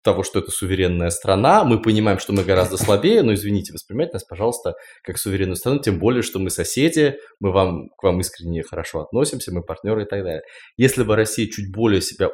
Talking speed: 205 wpm